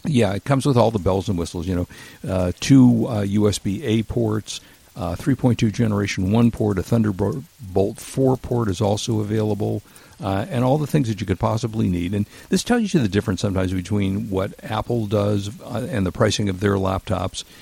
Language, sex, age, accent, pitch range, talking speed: English, male, 50-69, American, 95-120 Hz, 190 wpm